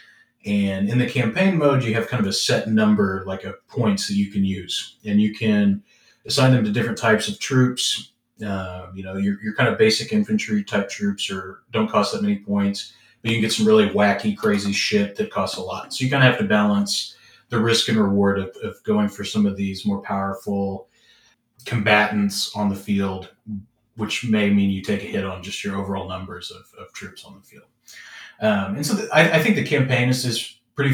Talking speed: 215 wpm